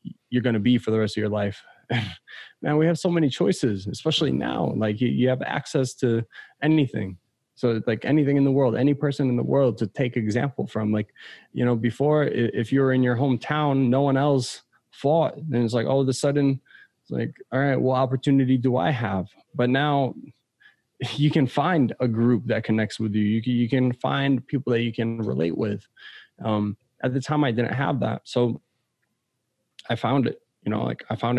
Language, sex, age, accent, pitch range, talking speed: English, male, 20-39, American, 115-140 Hz, 205 wpm